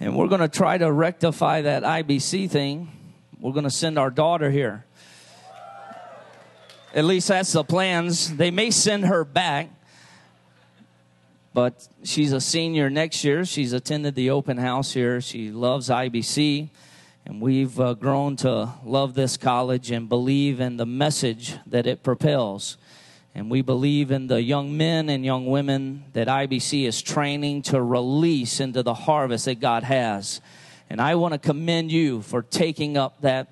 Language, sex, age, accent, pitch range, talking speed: English, male, 40-59, American, 125-150 Hz, 160 wpm